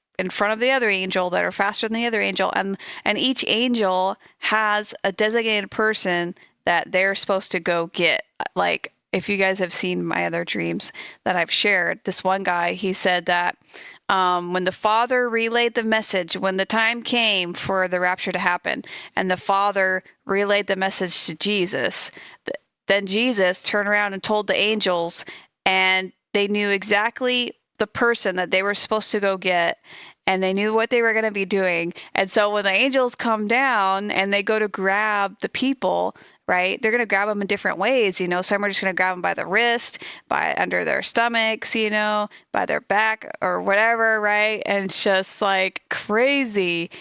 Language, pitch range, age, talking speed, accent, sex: English, 185-220 Hz, 30-49, 190 wpm, American, female